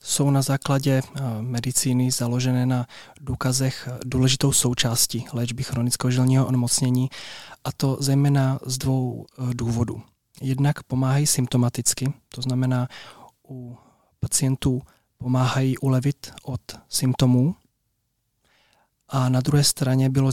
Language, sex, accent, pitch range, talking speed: Czech, male, native, 125-135 Hz, 105 wpm